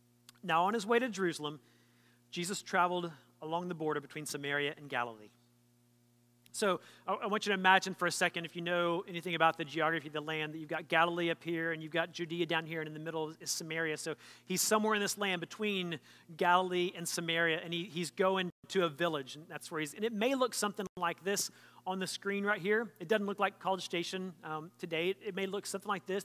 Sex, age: male, 30-49